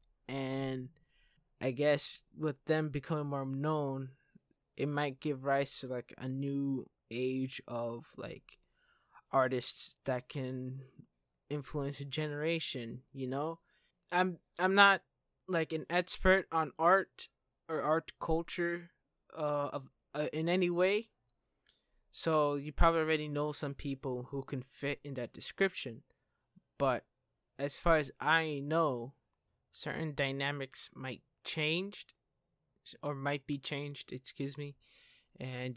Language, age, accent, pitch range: English, 20-39, American, 130-155 Hz